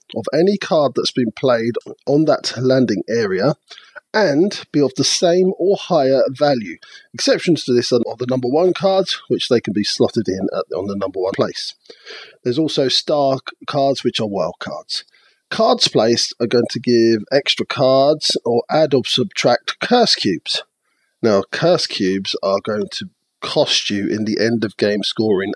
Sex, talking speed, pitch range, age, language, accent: male, 170 wpm, 110-155 Hz, 40-59, English, British